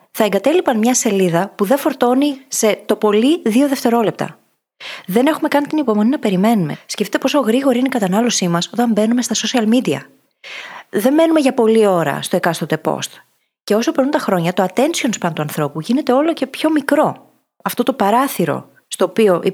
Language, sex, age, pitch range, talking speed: Greek, female, 20-39, 180-250 Hz, 185 wpm